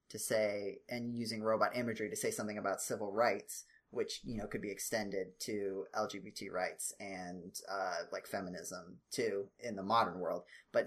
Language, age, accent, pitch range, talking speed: English, 20-39, American, 110-130 Hz, 170 wpm